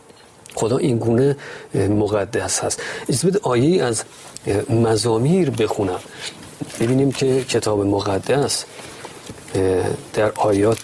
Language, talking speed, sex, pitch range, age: Persian, 90 wpm, male, 105-125 Hz, 40-59